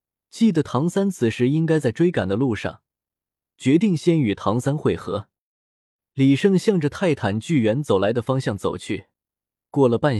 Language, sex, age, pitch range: Chinese, male, 20-39, 115-160 Hz